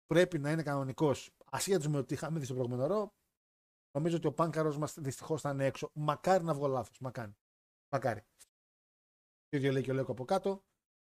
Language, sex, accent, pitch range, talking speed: Greek, male, native, 135-180 Hz, 190 wpm